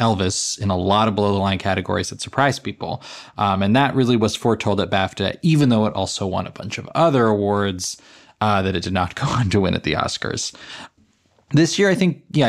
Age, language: 20-39, English